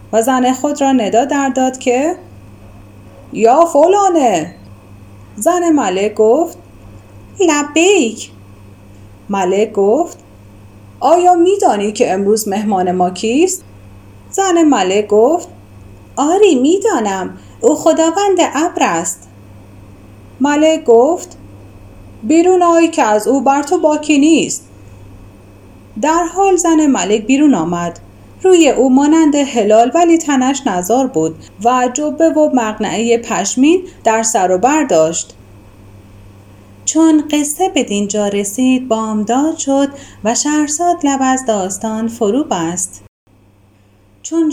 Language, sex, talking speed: Persian, female, 110 wpm